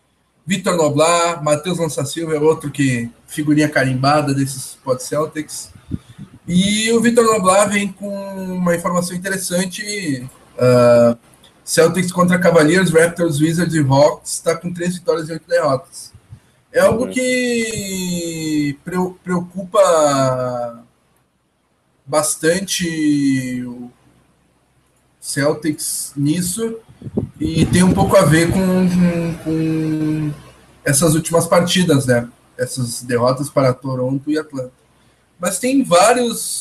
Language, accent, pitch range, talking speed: Portuguese, Brazilian, 135-175 Hz, 110 wpm